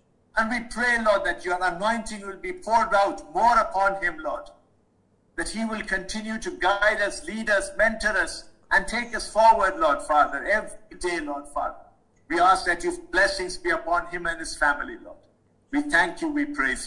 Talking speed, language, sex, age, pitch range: 190 wpm, English, male, 50-69, 190-290 Hz